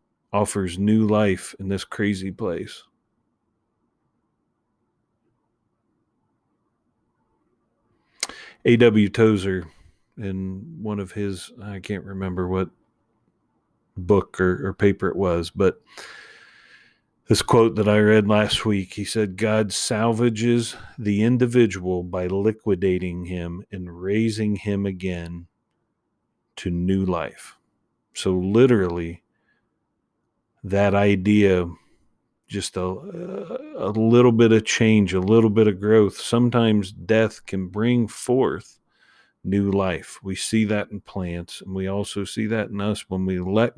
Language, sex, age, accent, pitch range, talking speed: English, male, 40-59, American, 95-110 Hz, 115 wpm